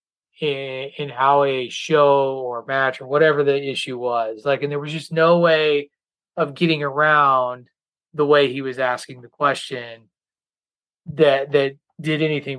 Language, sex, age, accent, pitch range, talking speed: English, male, 30-49, American, 130-160 Hz, 155 wpm